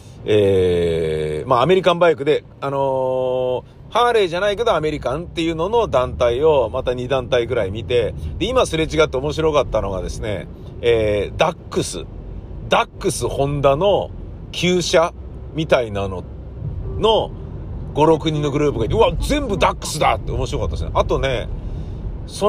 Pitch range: 100-165 Hz